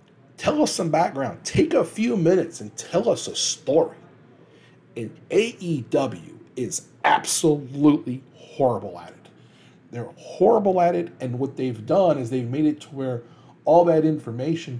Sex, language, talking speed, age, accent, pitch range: male, English, 150 wpm, 40-59, American, 125-155 Hz